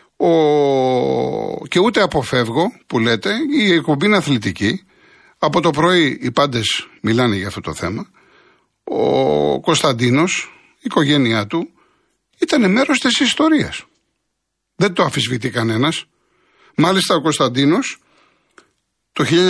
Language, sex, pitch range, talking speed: Greek, male, 125-190 Hz, 110 wpm